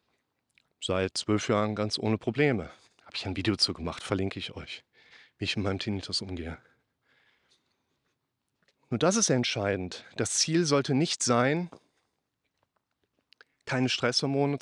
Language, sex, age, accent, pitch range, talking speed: German, male, 40-59, German, 105-140 Hz, 130 wpm